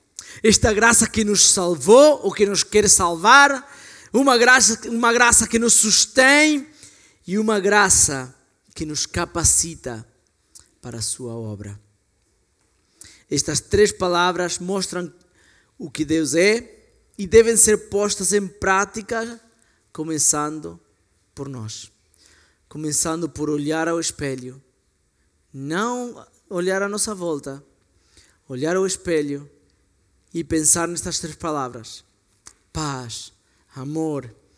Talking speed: 110 wpm